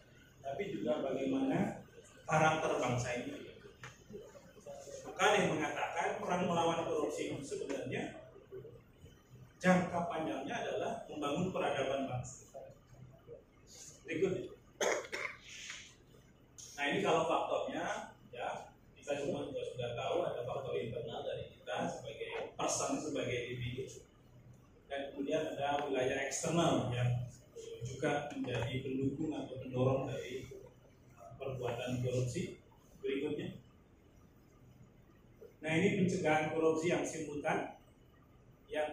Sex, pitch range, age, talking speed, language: male, 130-165 Hz, 30-49, 90 wpm, Indonesian